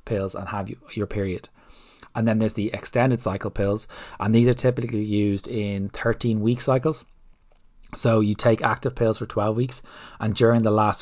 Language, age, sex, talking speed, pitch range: English, 20-39, male, 180 wpm, 100-115 Hz